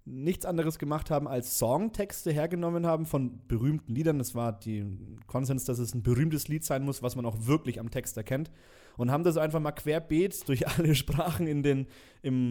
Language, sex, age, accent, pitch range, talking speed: German, male, 30-49, German, 115-150 Hz, 185 wpm